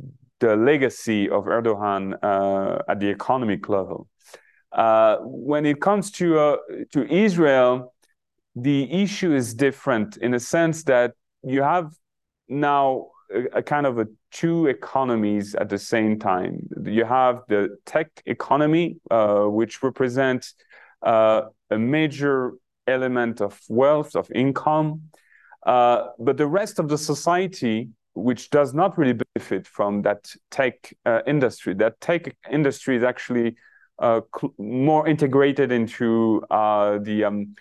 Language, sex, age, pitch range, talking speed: English, male, 30-49, 110-145 Hz, 130 wpm